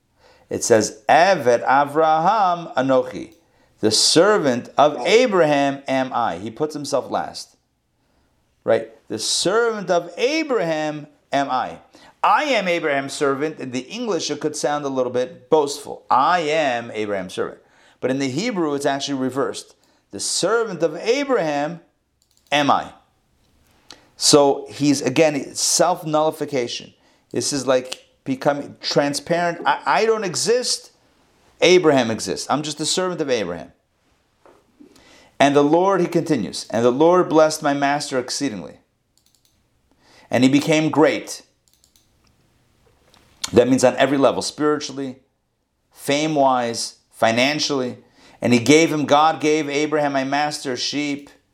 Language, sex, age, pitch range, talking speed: English, male, 40-59, 130-160 Hz, 125 wpm